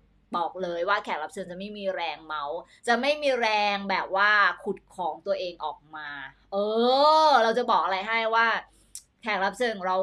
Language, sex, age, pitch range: Thai, female, 20-39, 195-255 Hz